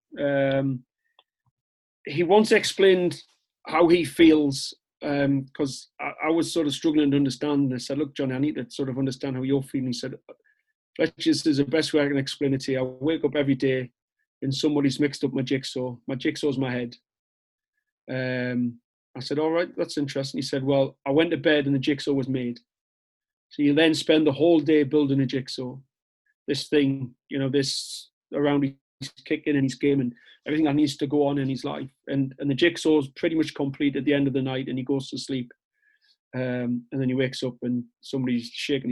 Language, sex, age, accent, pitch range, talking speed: English, male, 30-49, British, 130-150 Hz, 215 wpm